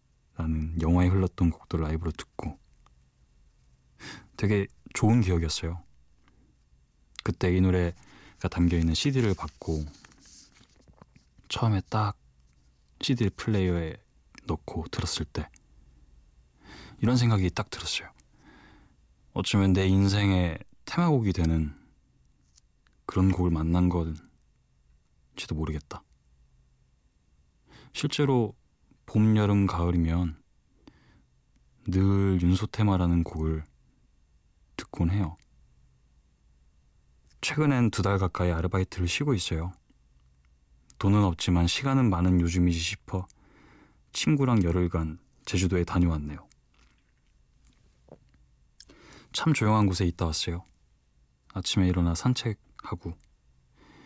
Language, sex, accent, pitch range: Korean, male, native, 65-95 Hz